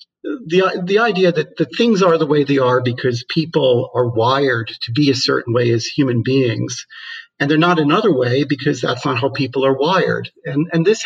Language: English